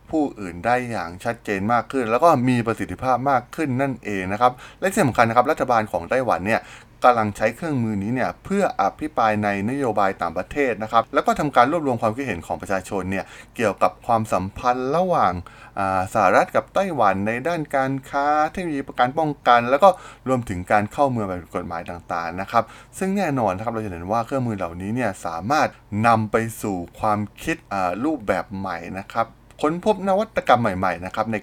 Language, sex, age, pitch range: Thai, male, 20-39, 95-130 Hz